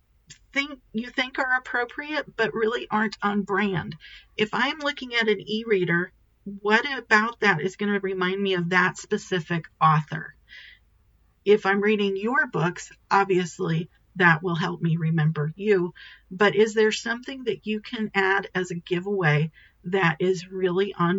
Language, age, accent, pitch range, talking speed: English, 40-59, American, 165-200 Hz, 155 wpm